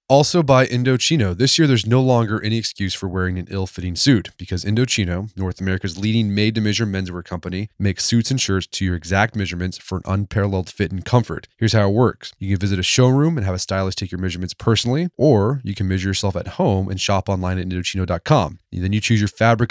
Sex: male